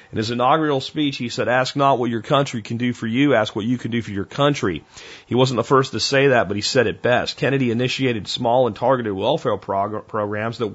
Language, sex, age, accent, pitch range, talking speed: English, male, 40-59, American, 110-135 Hz, 240 wpm